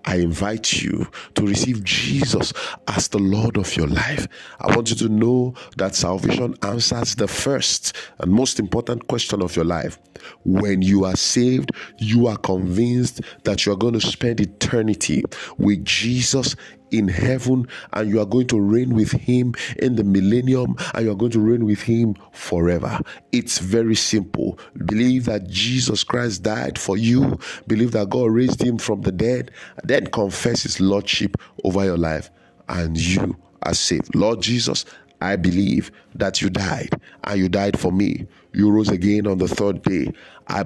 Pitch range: 95-115 Hz